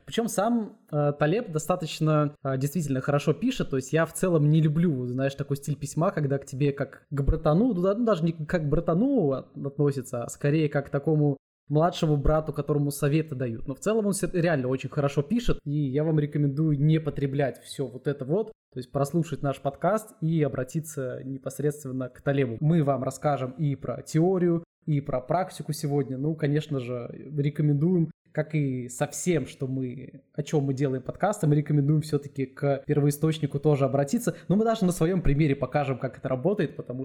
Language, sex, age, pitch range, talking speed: Russian, male, 20-39, 140-160 Hz, 185 wpm